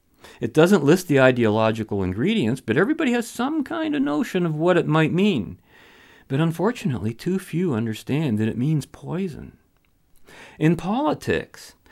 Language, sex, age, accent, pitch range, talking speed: English, male, 40-59, American, 125-185 Hz, 145 wpm